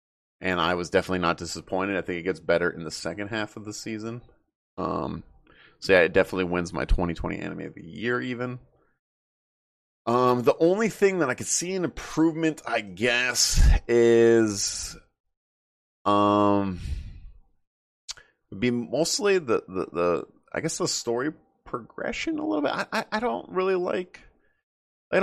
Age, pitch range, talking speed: 30-49, 90-125 Hz, 155 wpm